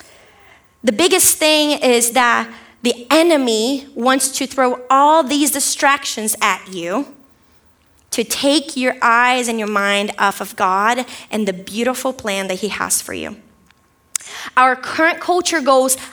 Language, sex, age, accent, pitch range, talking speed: English, female, 20-39, American, 230-295 Hz, 140 wpm